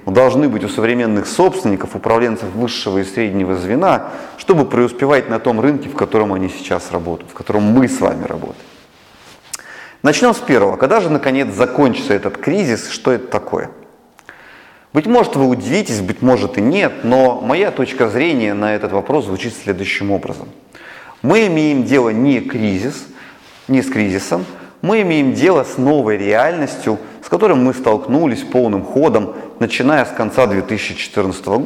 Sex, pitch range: male, 105-135 Hz